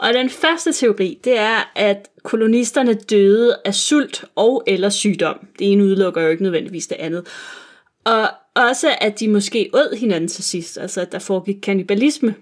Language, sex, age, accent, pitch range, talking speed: Danish, female, 30-49, native, 195-240 Hz, 175 wpm